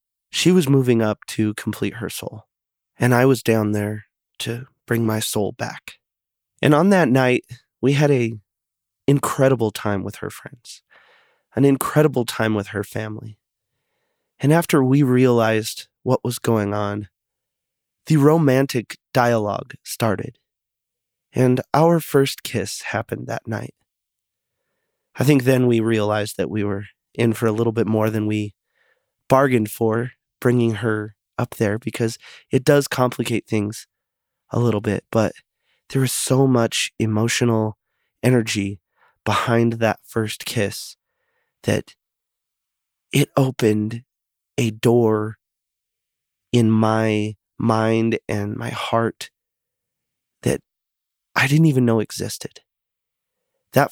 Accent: American